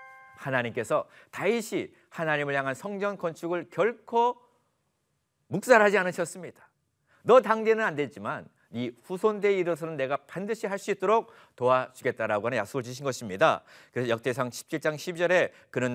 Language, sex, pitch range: Korean, male, 130-200 Hz